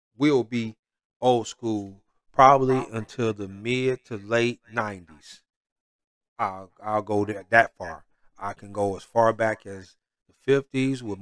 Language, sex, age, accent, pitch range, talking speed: English, male, 30-49, American, 105-125 Hz, 145 wpm